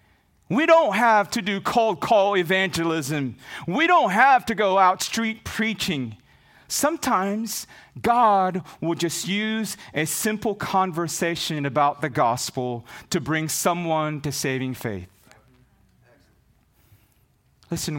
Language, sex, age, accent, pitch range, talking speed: English, male, 30-49, American, 115-165 Hz, 115 wpm